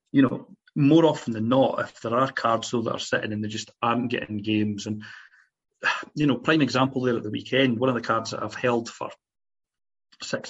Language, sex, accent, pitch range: English, male, British, 115-140 Hz